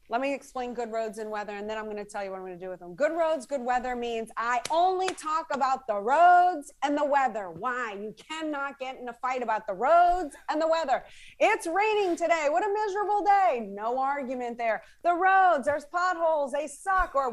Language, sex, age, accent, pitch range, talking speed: English, female, 30-49, American, 250-320 Hz, 225 wpm